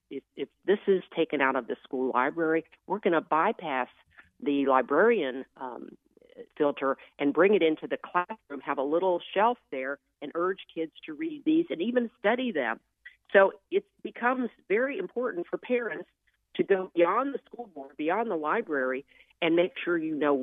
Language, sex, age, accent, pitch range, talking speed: English, female, 50-69, American, 150-245 Hz, 175 wpm